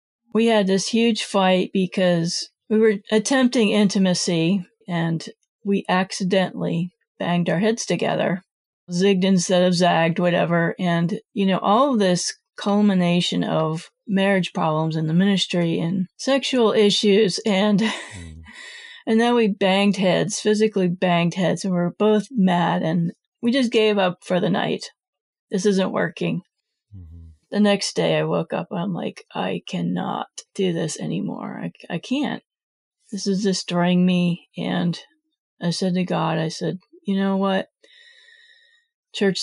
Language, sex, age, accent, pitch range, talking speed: English, female, 40-59, American, 175-215 Hz, 145 wpm